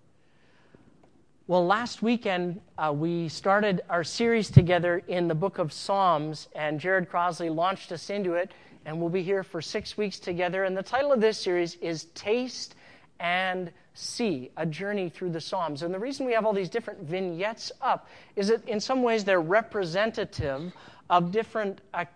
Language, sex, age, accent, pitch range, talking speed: English, male, 40-59, American, 155-195 Hz, 175 wpm